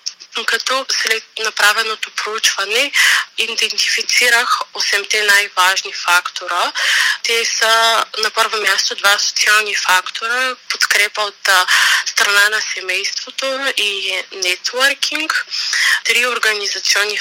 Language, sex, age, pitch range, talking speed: Bulgarian, female, 20-39, 200-245 Hz, 90 wpm